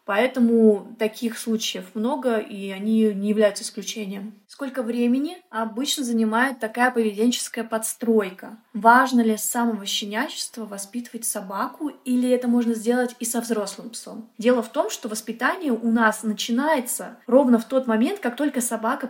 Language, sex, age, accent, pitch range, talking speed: Russian, female, 20-39, native, 220-255 Hz, 145 wpm